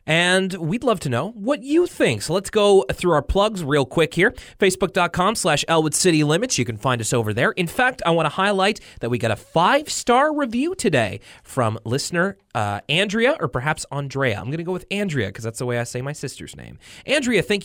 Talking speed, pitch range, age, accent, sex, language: 220 wpm, 120-185 Hz, 30-49, American, male, English